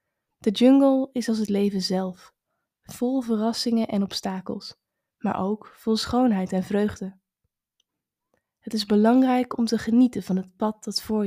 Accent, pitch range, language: Dutch, 200-235 Hz, Dutch